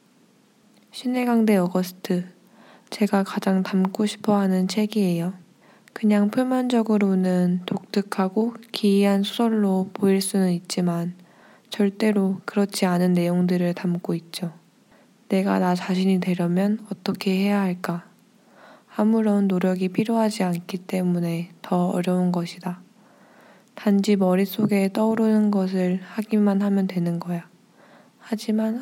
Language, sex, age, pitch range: Korean, female, 20-39, 180-215 Hz